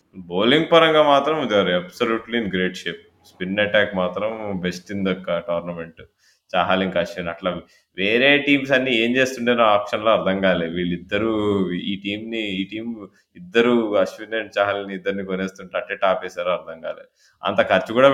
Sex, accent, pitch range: male, native, 90-110 Hz